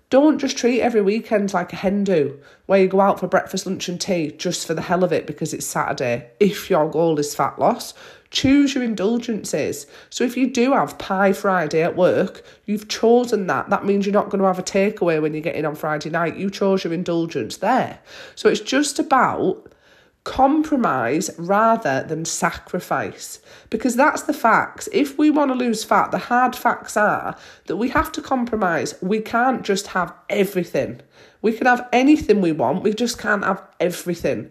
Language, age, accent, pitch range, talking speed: English, 40-59, British, 180-250 Hz, 195 wpm